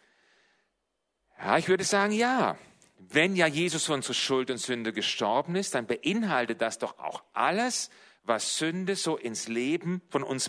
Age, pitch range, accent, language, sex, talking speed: 40-59, 120-185 Hz, German, German, male, 160 wpm